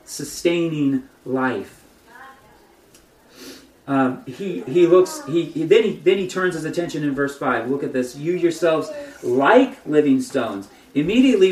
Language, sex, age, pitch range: English, male, 30-49, 160-255 Hz